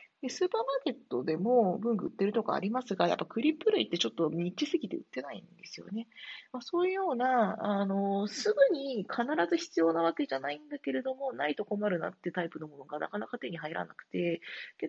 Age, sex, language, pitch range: 40-59, female, Japanese, 170-270 Hz